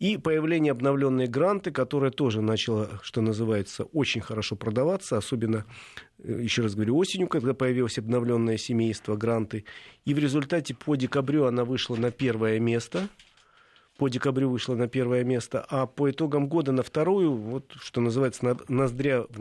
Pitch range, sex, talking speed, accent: 115-150 Hz, male, 150 wpm, native